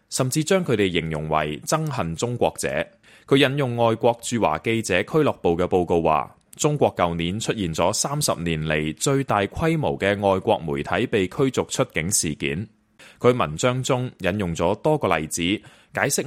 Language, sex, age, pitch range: Chinese, male, 20-39, 85-135 Hz